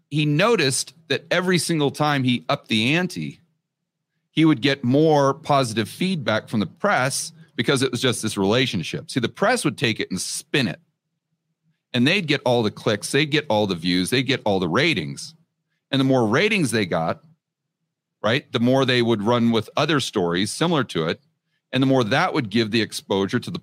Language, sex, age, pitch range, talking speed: English, male, 40-59, 125-165 Hz, 200 wpm